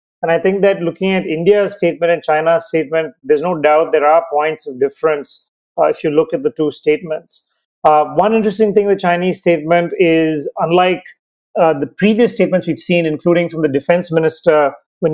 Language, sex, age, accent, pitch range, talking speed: English, male, 30-49, Indian, 155-190 Hz, 190 wpm